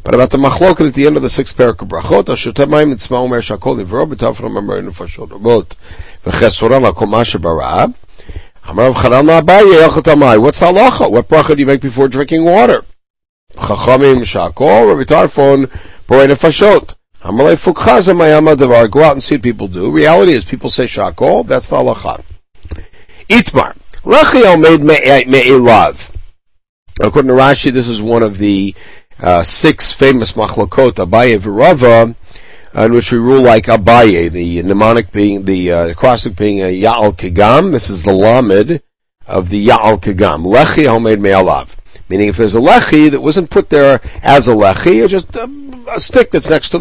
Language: English